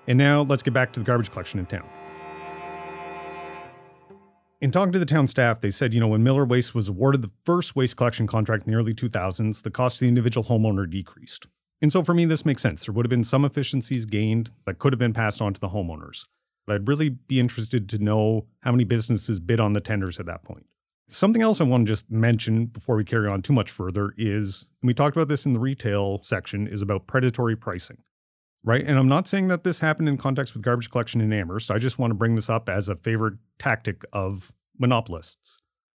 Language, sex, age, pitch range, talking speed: English, male, 30-49, 105-130 Hz, 230 wpm